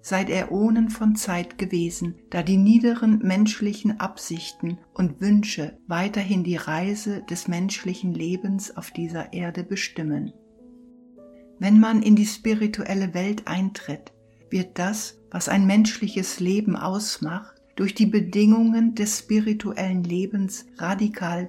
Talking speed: 125 wpm